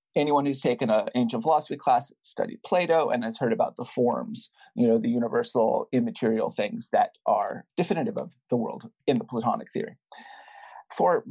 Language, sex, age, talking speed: English, male, 40-59, 170 wpm